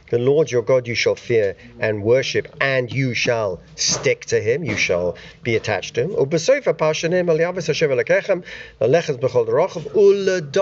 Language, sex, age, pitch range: English, male, 50-69, 145-240 Hz